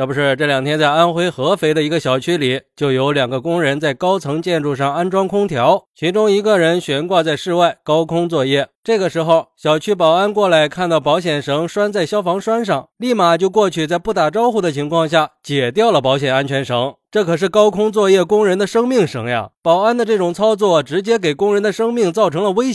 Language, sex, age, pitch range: Chinese, male, 20-39, 150-205 Hz